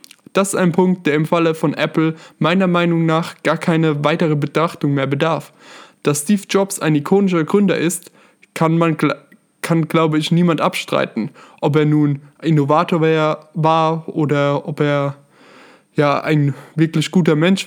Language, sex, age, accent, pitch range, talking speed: German, male, 20-39, German, 155-180 Hz, 155 wpm